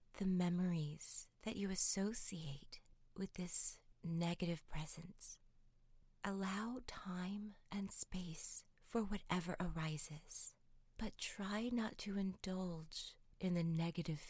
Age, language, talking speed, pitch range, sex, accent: 30-49, English, 100 wpm, 155-200 Hz, female, American